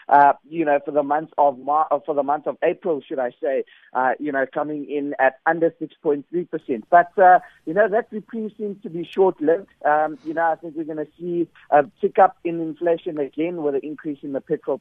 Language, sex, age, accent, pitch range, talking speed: English, male, 50-69, South African, 150-180 Hz, 225 wpm